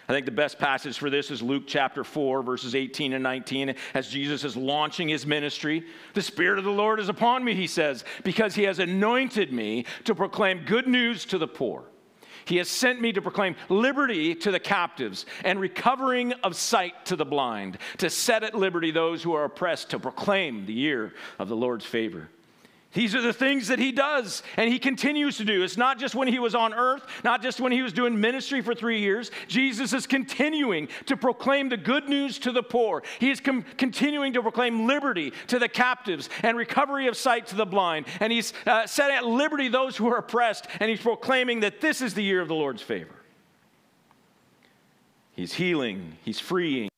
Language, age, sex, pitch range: English, 50-69, male, 165-250 Hz